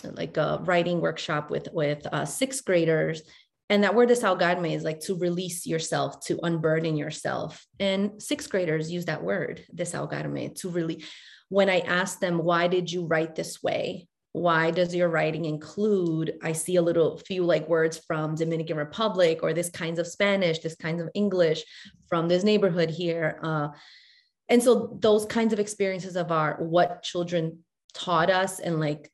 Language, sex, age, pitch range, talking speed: English, female, 30-49, 160-195 Hz, 170 wpm